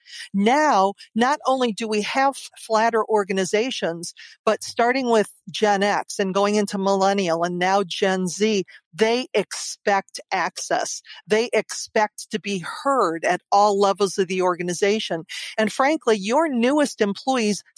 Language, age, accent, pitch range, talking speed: English, 50-69, American, 190-225 Hz, 135 wpm